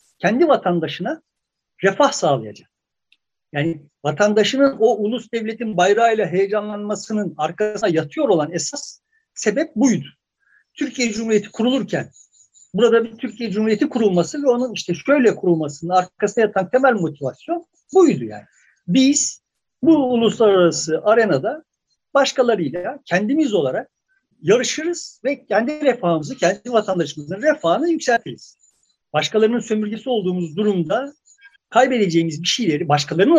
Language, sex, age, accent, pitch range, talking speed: Turkish, male, 60-79, native, 175-255 Hz, 105 wpm